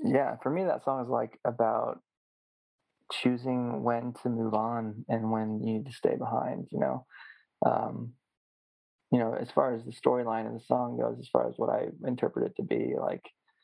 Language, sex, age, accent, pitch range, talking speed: English, male, 20-39, American, 110-125 Hz, 195 wpm